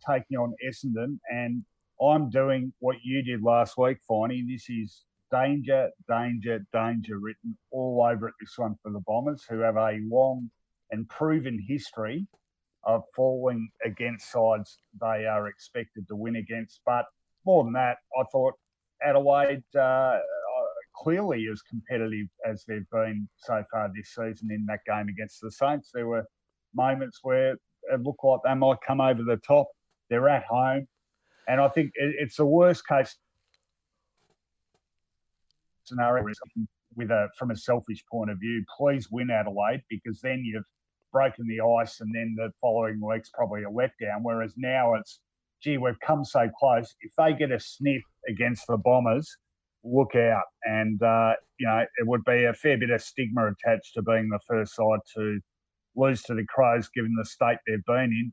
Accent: Australian